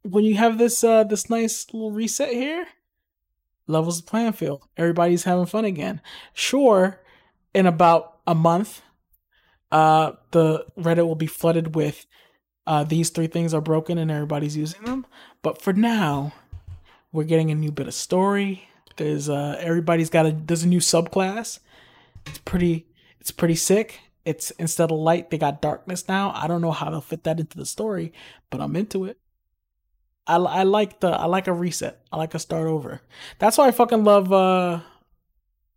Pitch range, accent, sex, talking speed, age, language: 160-195 Hz, American, male, 175 wpm, 20-39, English